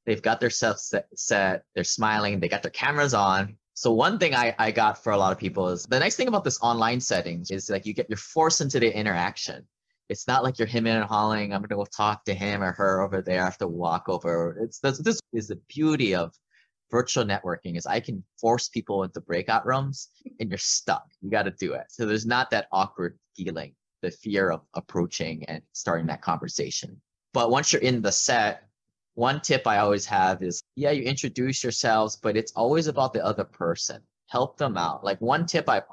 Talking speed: 220 wpm